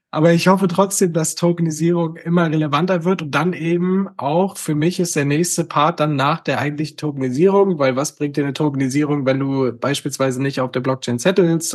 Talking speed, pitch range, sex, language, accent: 195 wpm, 145-175 Hz, male, German, German